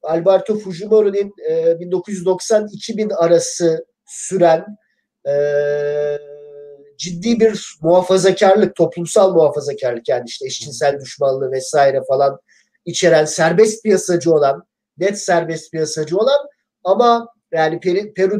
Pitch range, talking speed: 165-215 Hz, 95 wpm